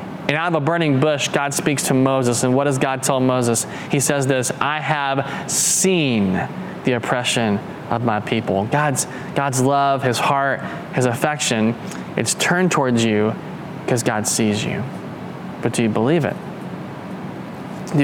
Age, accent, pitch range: 20-39, American, 120-145 Hz